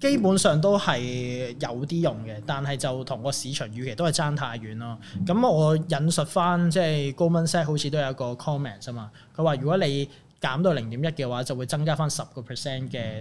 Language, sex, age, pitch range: Chinese, male, 20-39, 125-155 Hz